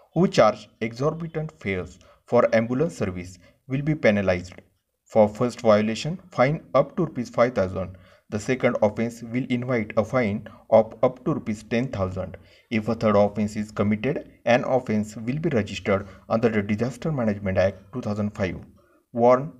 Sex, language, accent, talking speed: male, Marathi, native, 145 wpm